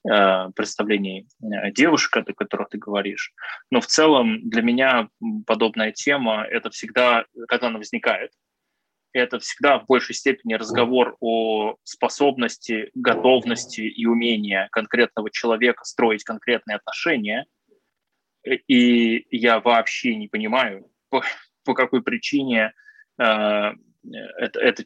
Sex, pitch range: male, 110-135 Hz